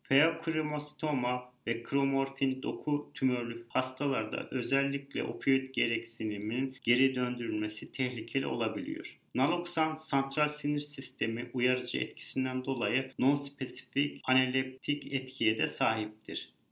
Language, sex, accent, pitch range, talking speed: Turkish, male, native, 125-145 Hz, 95 wpm